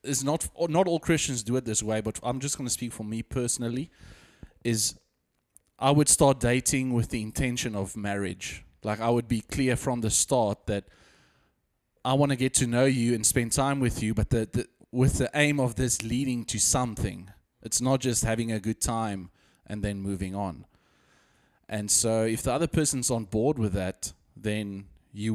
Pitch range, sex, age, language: 100-125 Hz, male, 20-39, English